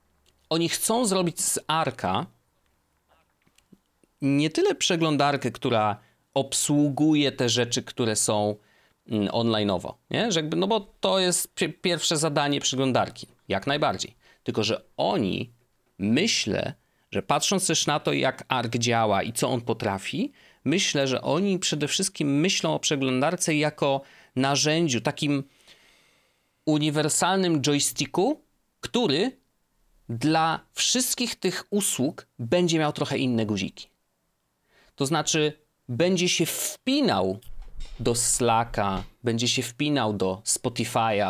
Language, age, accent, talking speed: Polish, 30-49, native, 110 wpm